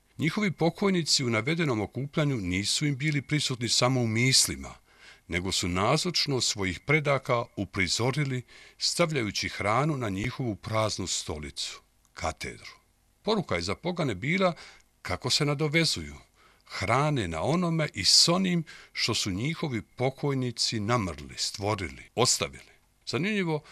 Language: Croatian